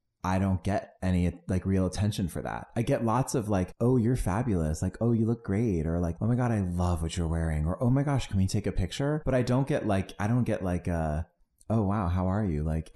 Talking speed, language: 265 wpm, English